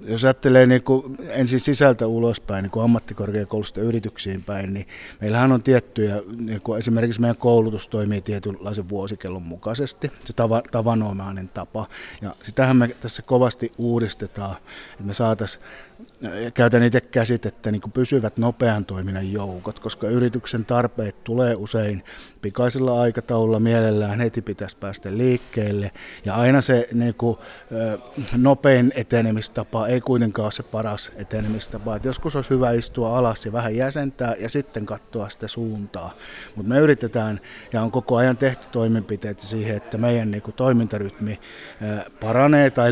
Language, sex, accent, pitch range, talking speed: Finnish, male, native, 105-125 Hz, 140 wpm